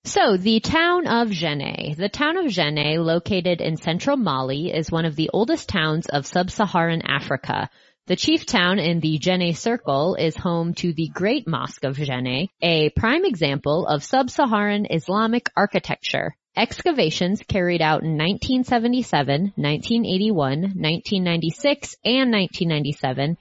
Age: 20-39